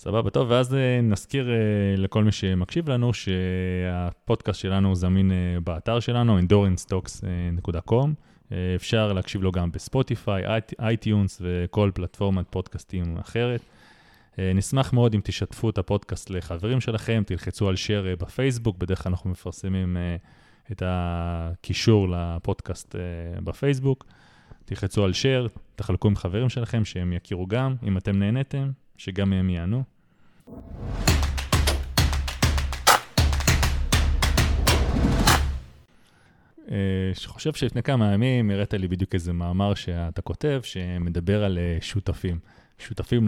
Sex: male